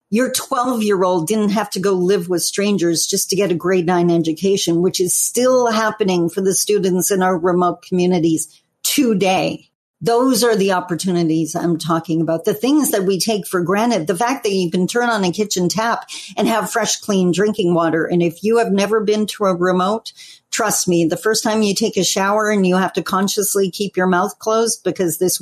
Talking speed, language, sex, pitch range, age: 205 wpm, English, female, 180-220 Hz, 50-69